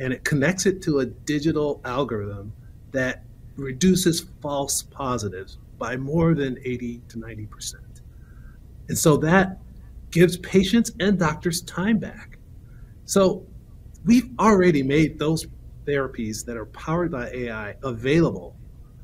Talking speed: 125 wpm